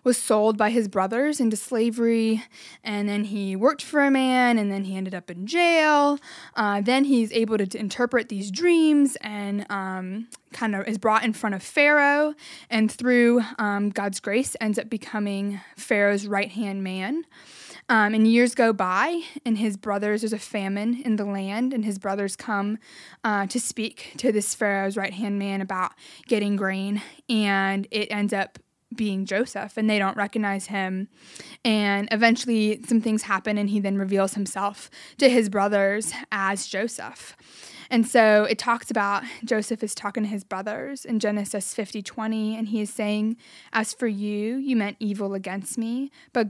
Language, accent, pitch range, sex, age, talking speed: English, American, 200-235 Hz, female, 20-39, 170 wpm